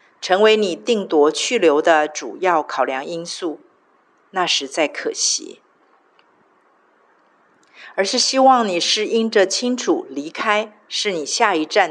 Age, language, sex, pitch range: 50-69, Chinese, female, 170-235 Hz